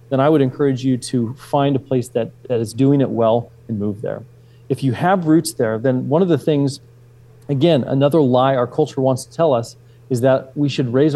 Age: 30-49